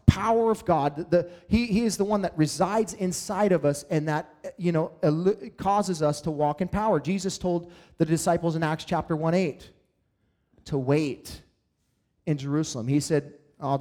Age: 30-49